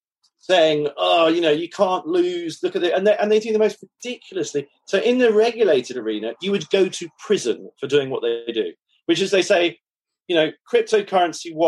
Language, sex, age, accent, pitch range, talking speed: English, male, 40-59, British, 155-245 Hz, 205 wpm